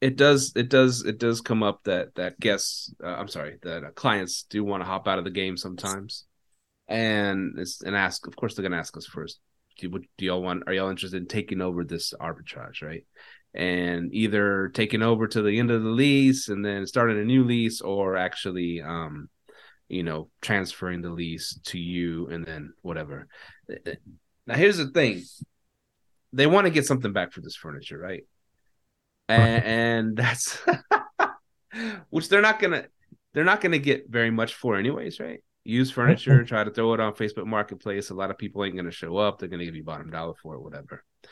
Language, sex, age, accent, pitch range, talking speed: English, male, 30-49, American, 95-125 Hz, 195 wpm